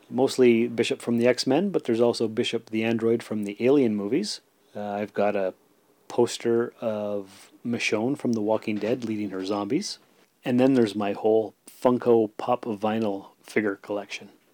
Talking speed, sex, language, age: 160 wpm, male, English, 30-49